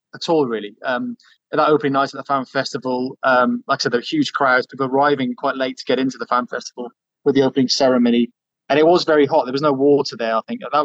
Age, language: 20-39, English